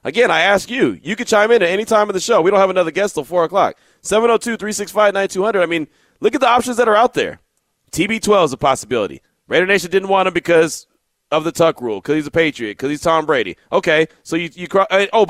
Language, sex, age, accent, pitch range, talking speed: English, male, 30-49, American, 160-215 Hz, 240 wpm